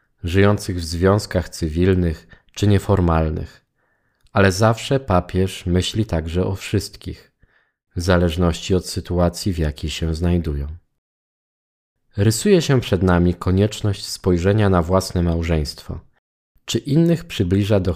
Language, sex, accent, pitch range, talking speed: Polish, male, native, 85-105 Hz, 115 wpm